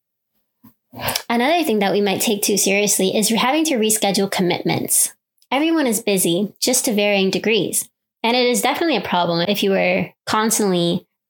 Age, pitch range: 20-39, 205-260 Hz